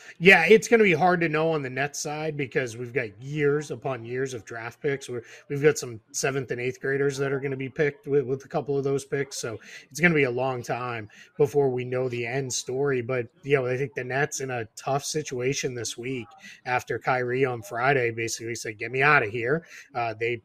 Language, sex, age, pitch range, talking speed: English, male, 20-39, 125-160 Hz, 240 wpm